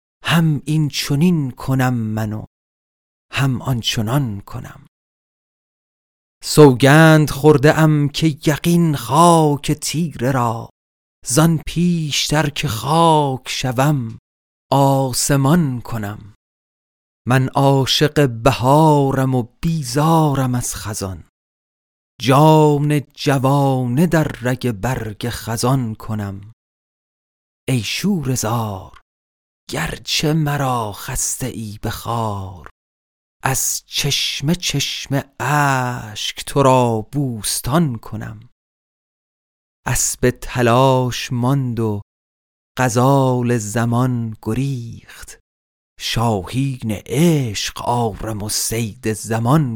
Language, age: Persian, 40-59